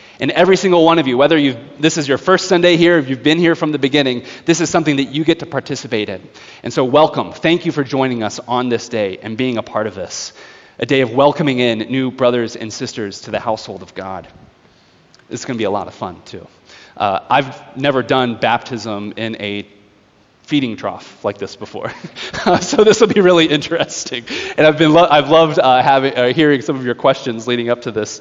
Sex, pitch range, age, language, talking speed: male, 120-160 Hz, 30-49, English, 225 wpm